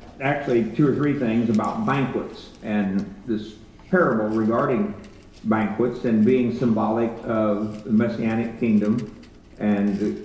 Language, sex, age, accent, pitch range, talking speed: English, male, 50-69, American, 105-135 Hz, 125 wpm